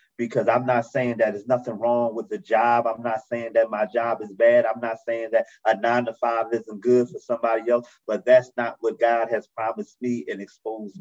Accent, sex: American, male